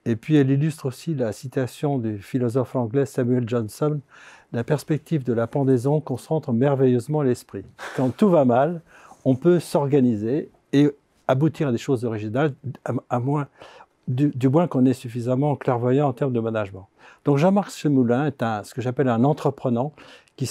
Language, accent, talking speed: French, French, 175 wpm